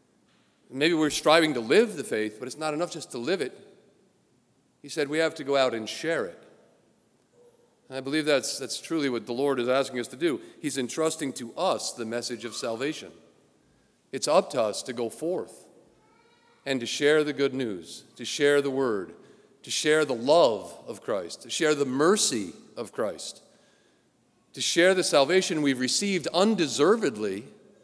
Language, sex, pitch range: English, male, 130-160 Hz